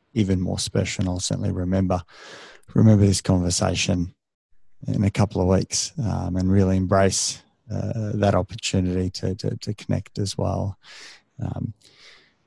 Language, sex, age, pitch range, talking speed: English, male, 20-39, 95-110 Hz, 140 wpm